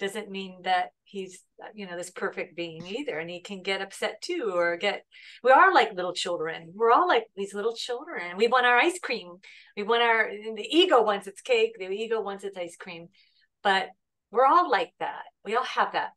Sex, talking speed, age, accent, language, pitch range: female, 210 wpm, 40-59, American, English, 195-260 Hz